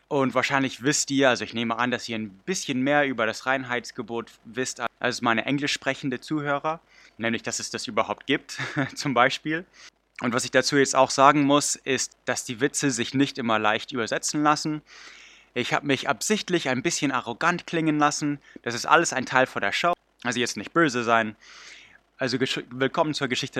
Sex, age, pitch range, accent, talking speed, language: male, 20-39, 120-150 Hz, German, 190 wpm, English